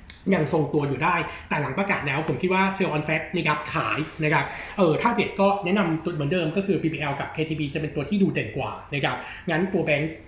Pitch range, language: 145-185 Hz, Thai